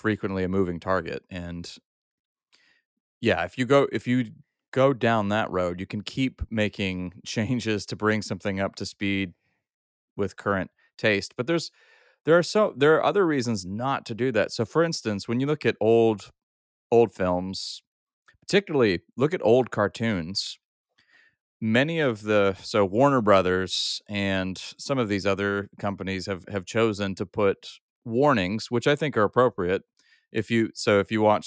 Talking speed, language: 165 wpm, English